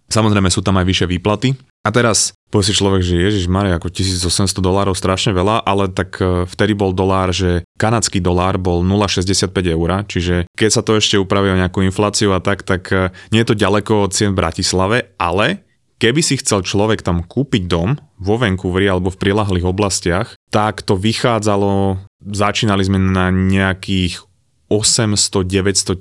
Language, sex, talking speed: Slovak, male, 165 wpm